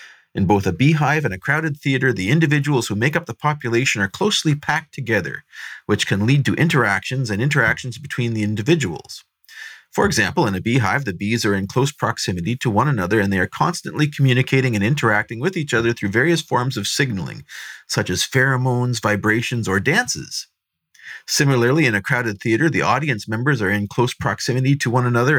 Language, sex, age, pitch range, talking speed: English, male, 40-59, 115-150 Hz, 185 wpm